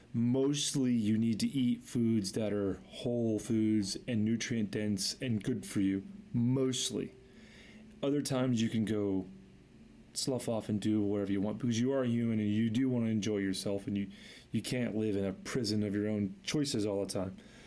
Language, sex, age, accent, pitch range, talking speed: English, male, 30-49, American, 105-130 Hz, 190 wpm